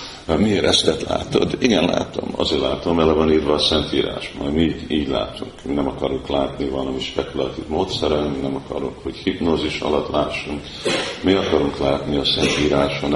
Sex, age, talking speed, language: male, 50-69, 165 wpm, Hungarian